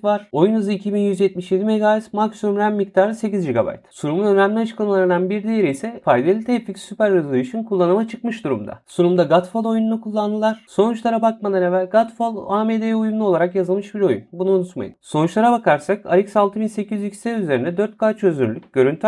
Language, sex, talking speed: Turkish, male, 150 wpm